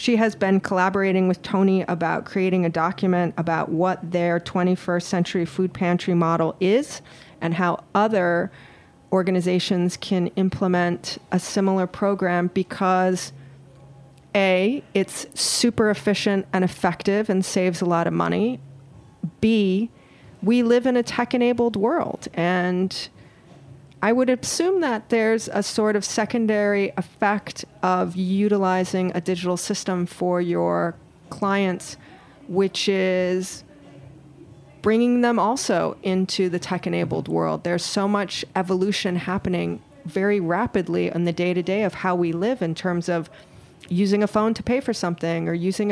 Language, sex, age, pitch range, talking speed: English, female, 30-49, 175-205 Hz, 135 wpm